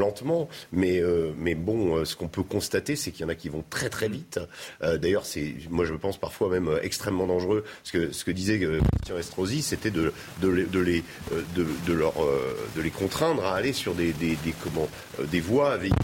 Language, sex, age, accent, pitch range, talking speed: French, male, 40-59, French, 85-120 Hz, 235 wpm